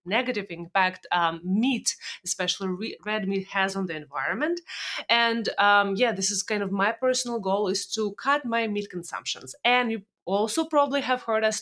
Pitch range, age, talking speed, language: 185-240 Hz, 20-39, 175 wpm, English